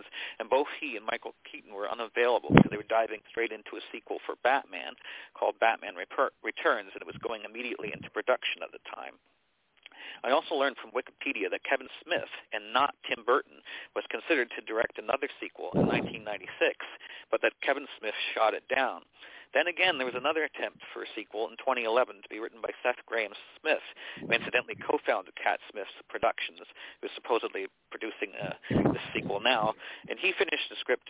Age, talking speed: 50-69, 180 wpm